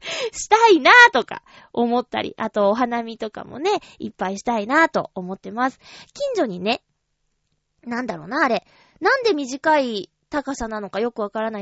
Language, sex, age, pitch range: Japanese, female, 20-39, 205-290 Hz